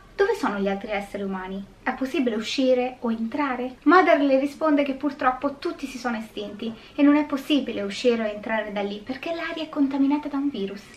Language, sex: Italian, female